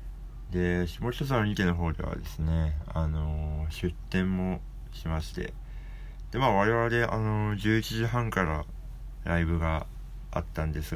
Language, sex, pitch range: Japanese, male, 80-115 Hz